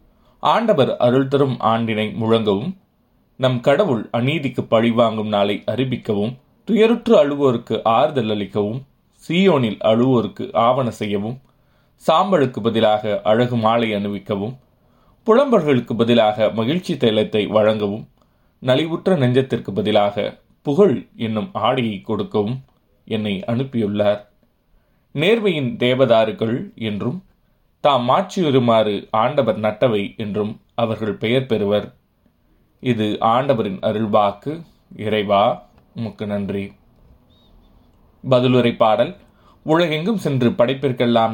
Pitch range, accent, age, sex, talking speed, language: 105-135 Hz, native, 30-49, male, 85 wpm, Tamil